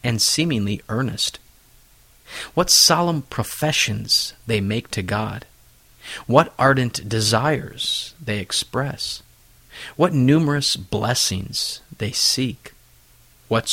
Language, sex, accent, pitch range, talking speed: English, male, American, 110-140 Hz, 90 wpm